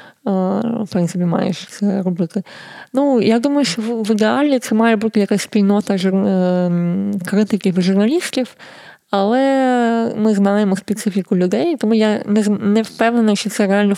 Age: 20-39